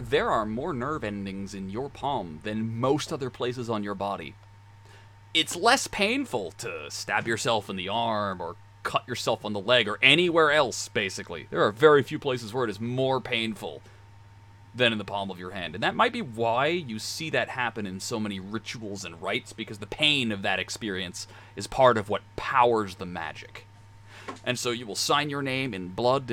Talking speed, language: 200 wpm, English